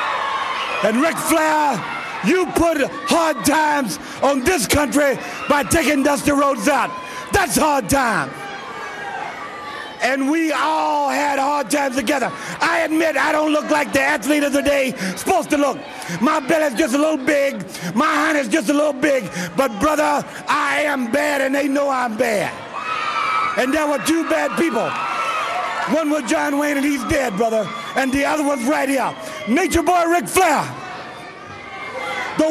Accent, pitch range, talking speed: American, 280-330 Hz, 160 wpm